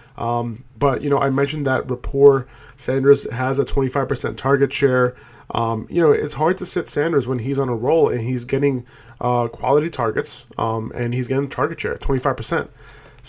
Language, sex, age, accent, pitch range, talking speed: English, male, 30-49, American, 120-140 Hz, 180 wpm